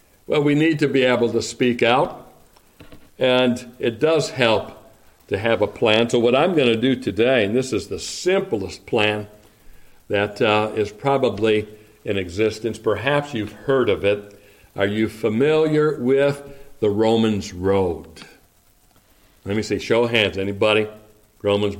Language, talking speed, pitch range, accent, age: English, 155 wpm, 105-130 Hz, American, 60-79